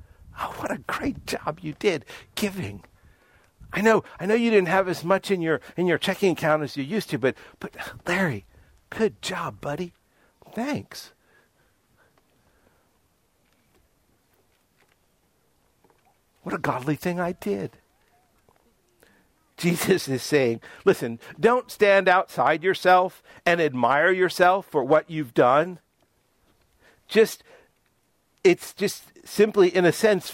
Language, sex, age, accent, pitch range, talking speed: English, male, 60-79, American, 140-190 Hz, 125 wpm